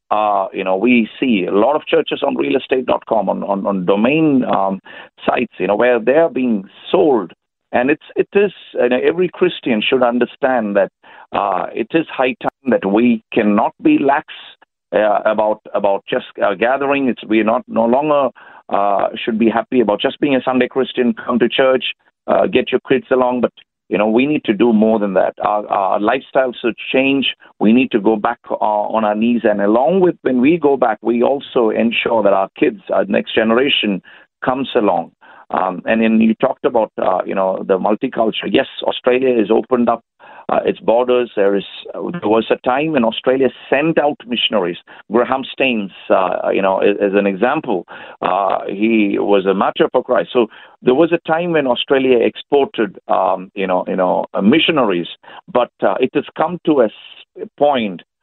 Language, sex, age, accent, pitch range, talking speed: English, male, 50-69, Indian, 105-130 Hz, 185 wpm